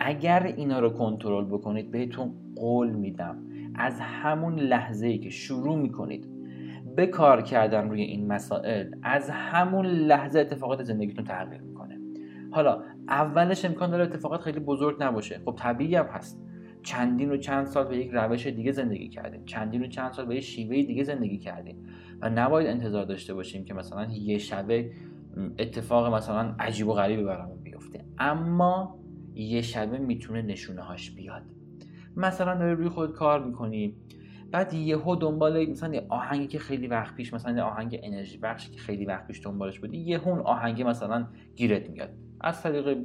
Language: Persian